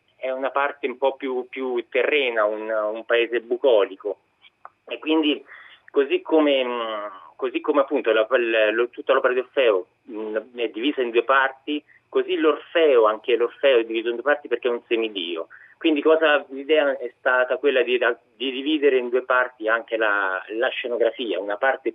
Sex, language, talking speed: male, Italian, 170 wpm